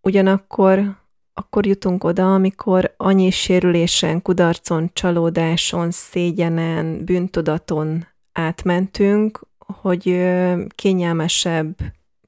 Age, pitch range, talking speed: 20-39, 165-180 Hz, 70 wpm